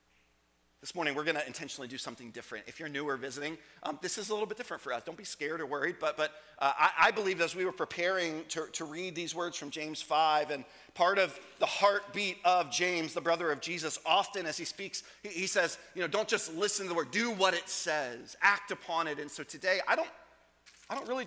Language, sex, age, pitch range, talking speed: English, male, 30-49, 120-185 Hz, 245 wpm